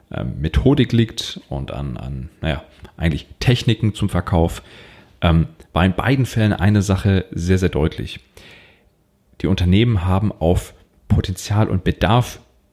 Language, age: German, 30-49